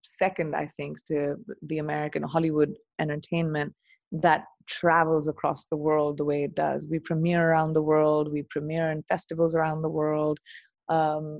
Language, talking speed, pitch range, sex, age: English, 160 wpm, 150-175 Hz, female, 20-39